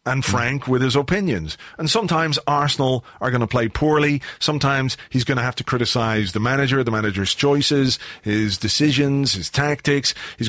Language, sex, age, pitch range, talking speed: English, male, 40-59, 110-135 Hz, 170 wpm